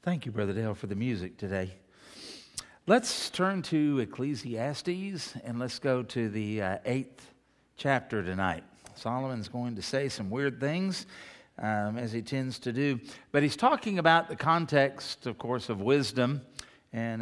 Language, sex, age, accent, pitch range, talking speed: English, male, 50-69, American, 115-155 Hz, 155 wpm